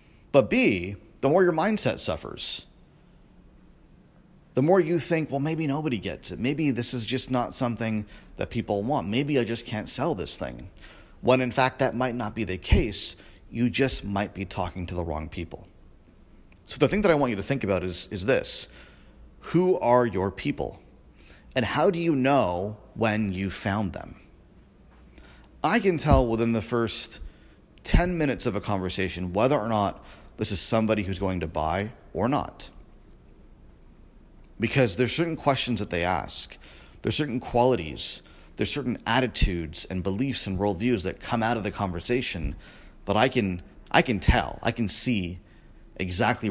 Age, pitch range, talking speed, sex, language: 30-49, 95-125 Hz, 170 wpm, male, English